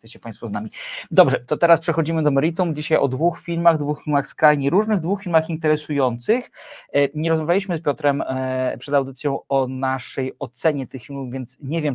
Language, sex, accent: Polish, male, native